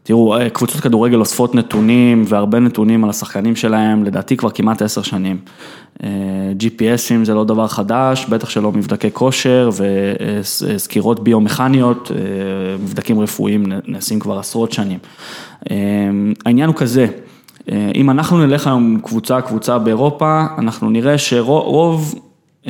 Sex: male